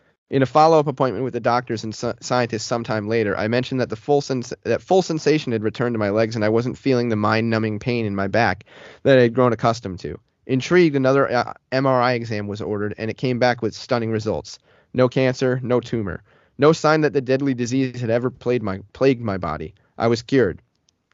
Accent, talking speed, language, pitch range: American, 215 wpm, English, 110-130 Hz